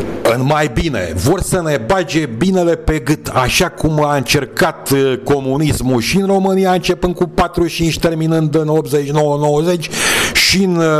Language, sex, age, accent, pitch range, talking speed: Romanian, male, 50-69, native, 130-170 Hz, 140 wpm